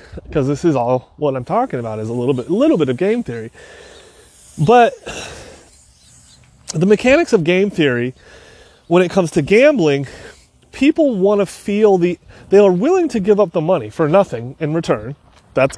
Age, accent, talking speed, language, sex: 30-49, American, 180 wpm, English, male